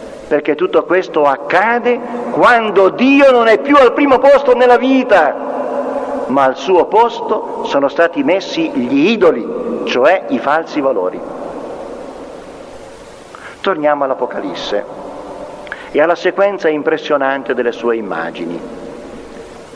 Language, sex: Italian, male